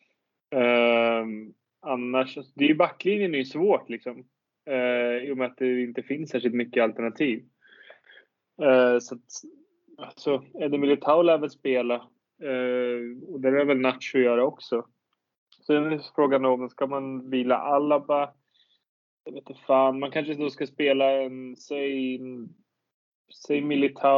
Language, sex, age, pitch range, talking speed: Swedish, male, 20-39, 120-140 Hz, 145 wpm